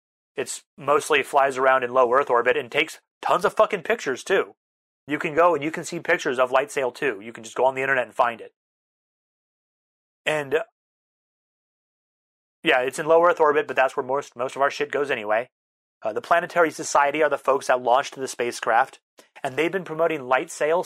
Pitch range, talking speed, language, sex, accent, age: 125-160 Hz, 205 wpm, English, male, American, 30-49